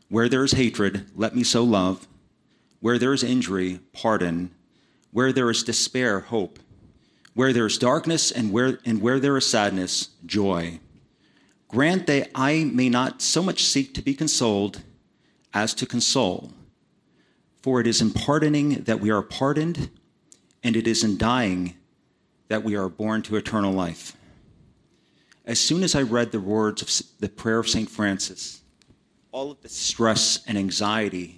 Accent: American